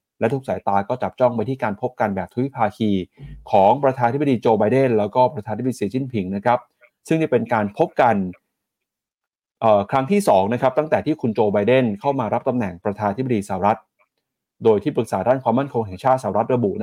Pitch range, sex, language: 110-135 Hz, male, Thai